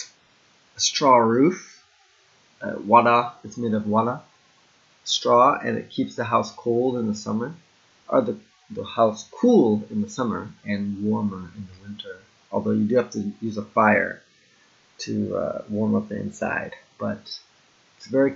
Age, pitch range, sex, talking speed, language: 30-49, 105-120 Hz, male, 165 wpm, English